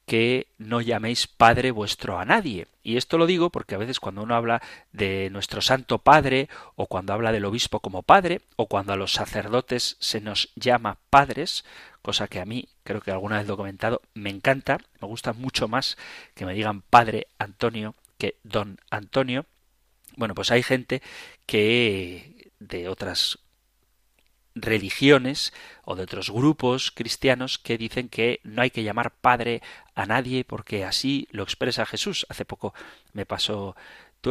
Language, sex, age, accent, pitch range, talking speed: Spanish, male, 30-49, Spanish, 105-130 Hz, 165 wpm